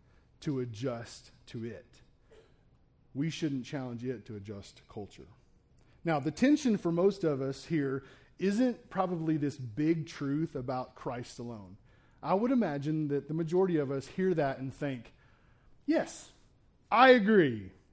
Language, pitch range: English, 120-165 Hz